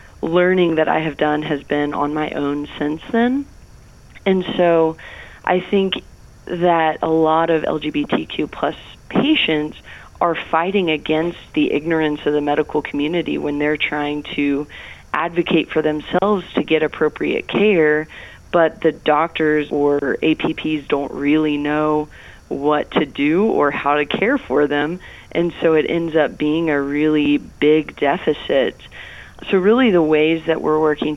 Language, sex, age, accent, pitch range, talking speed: English, female, 30-49, American, 150-165 Hz, 150 wpm